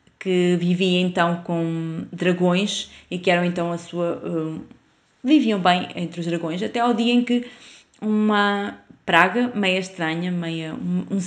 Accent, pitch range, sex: Brazilian, 175-205 Hz, female